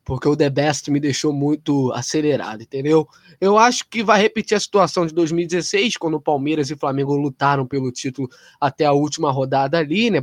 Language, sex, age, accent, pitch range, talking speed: Portuguese, male, 20-39, Brazilian, 150-210 Hz, 195 wpm